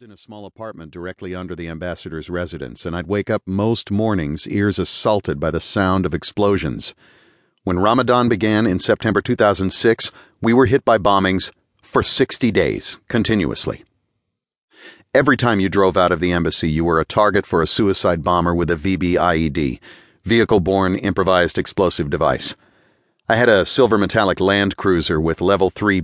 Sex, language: male, English